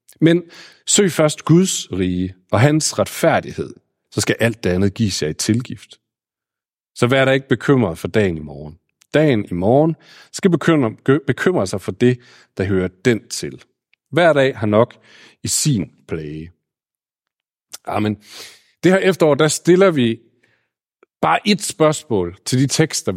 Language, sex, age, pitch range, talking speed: Danish, male, 40-59, 110-165 Hz, 155 wpm